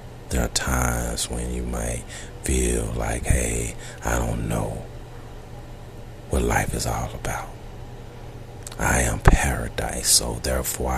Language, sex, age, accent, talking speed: English, male, 40-59, American, 120 wpm